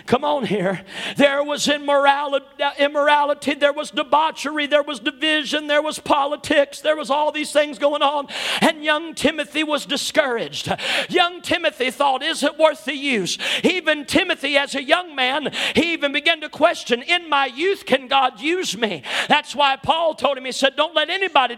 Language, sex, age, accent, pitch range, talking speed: English, male, 50-69, American, 280-345 Hz, 180 wpm